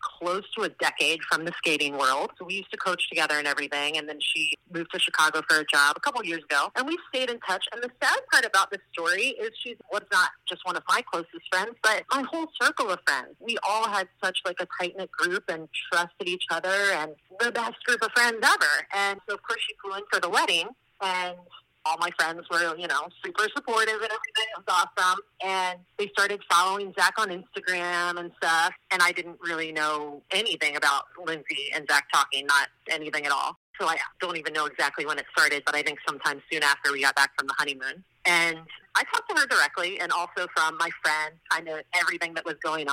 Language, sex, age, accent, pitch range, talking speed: English, female, 30-49, American, 155-195 Hz, 225 wpm